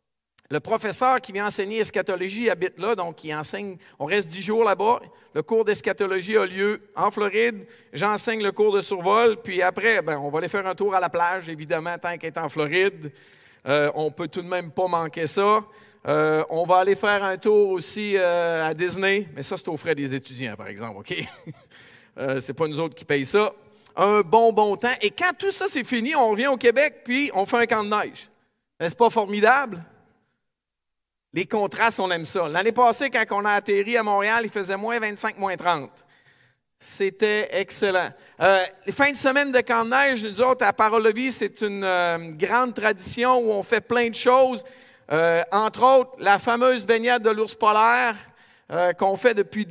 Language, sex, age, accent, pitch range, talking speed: French, male, 40-59, Canadian, 180-230 Hz, 205 wpm